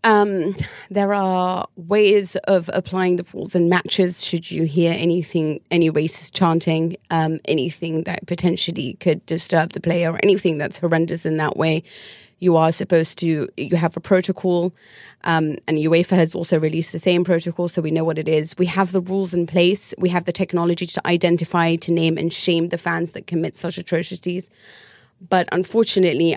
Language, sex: English, female